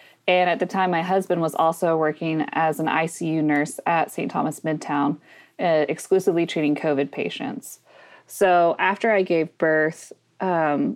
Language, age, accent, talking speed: English, 20-39, American, 155 wpm